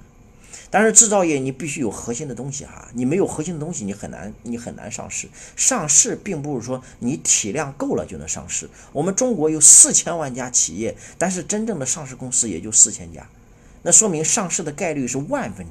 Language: Chinese